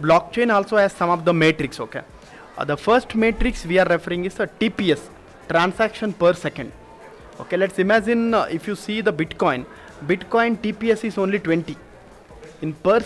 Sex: male